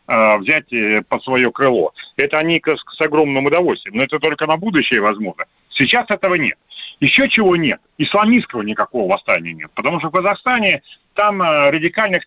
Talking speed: 150 wpm